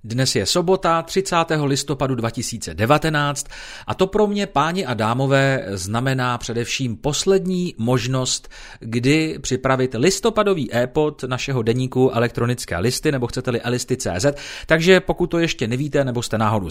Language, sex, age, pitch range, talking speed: Czech, male, 40-59, 115-155 Hz, 130 wpm